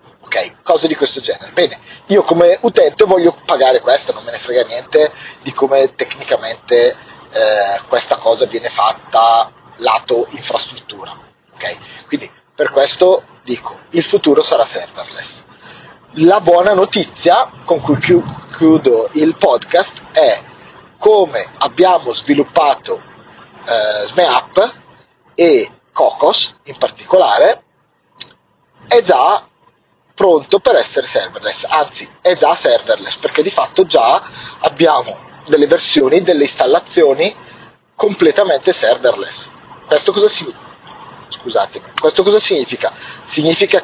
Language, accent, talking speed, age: Italian, native, 115 wpm, 30-49